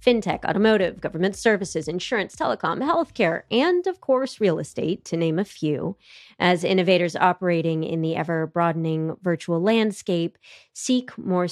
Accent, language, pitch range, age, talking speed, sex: American, English, 165-215 Hz, 30-49, 135 wpm, female